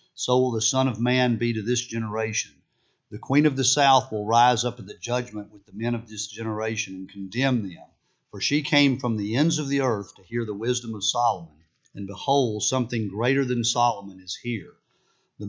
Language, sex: English, male